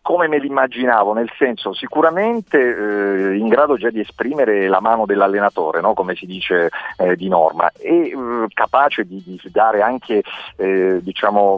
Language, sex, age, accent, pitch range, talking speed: Italian, male, 40-59, native, 100-150 Hz, 160 wpm